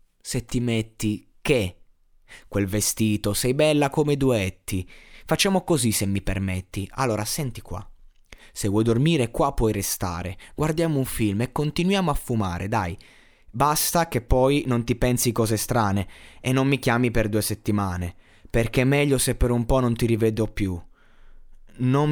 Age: 20-39